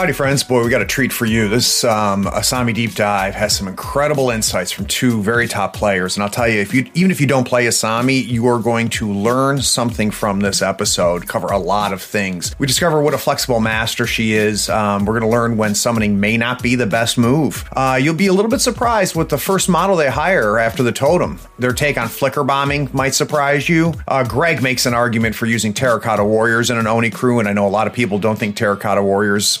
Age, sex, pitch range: 30-49, male, 105-140 Hz